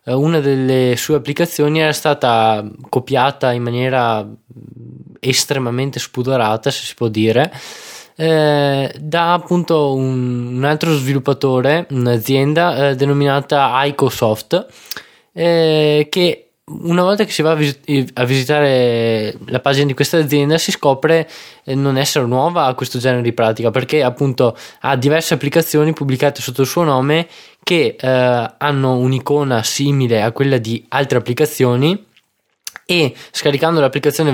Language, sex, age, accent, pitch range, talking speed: Italian, male, 20-39, native, 120-150 Hz, 125 wpm